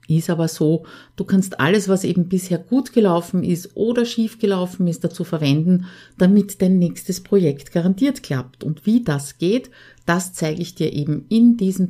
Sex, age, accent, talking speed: female, 50-69, Austrian, 175 wpm